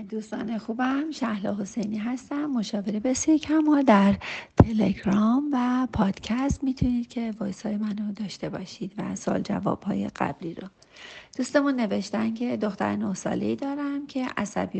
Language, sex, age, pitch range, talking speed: Persian, female, 40-59, 195-240 Hz, 140 wpm